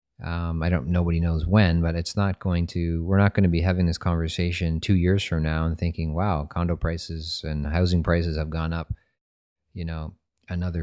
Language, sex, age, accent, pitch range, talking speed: English, male, 30-49, American, 85-95 Hz, 205 wpm